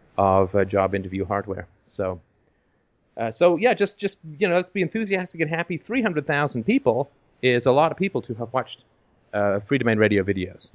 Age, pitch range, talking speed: 30-49, 105-130 Hz, 195 wpm